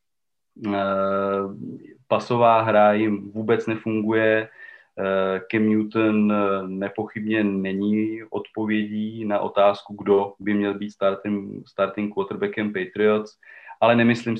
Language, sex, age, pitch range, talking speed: Slovak, male, 30-49, 100-115 Hz, 90 wpm